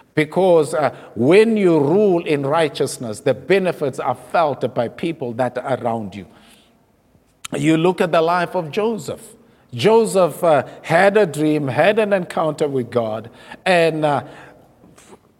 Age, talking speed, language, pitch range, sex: 50-69, 140 wpm, English, 145-190 Hz, male